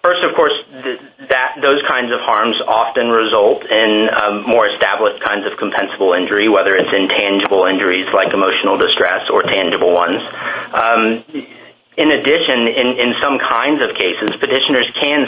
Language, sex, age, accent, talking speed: English, male, 30-49, American, 155 wpm